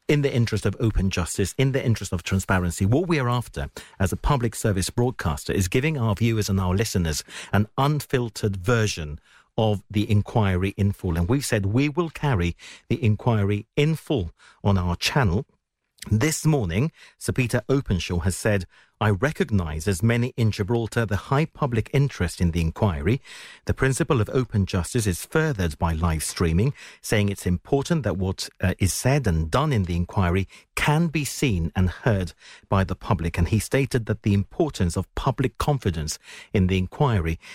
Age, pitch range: 50-69, 95-130 Hz